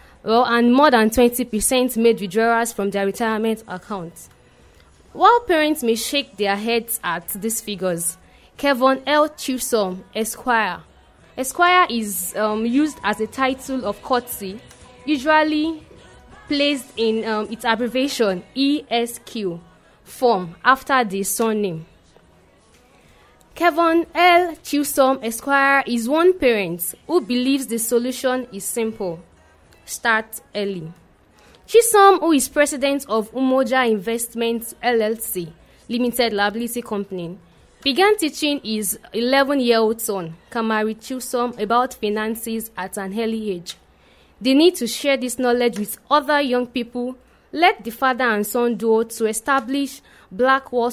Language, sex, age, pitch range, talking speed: English, female, 20-39, 210-265 Hz, 125 wpm